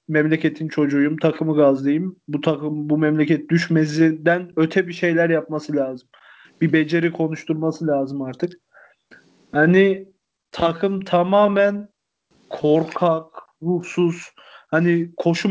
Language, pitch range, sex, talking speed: Turkish, 160-195 Hz, male, 100 wpm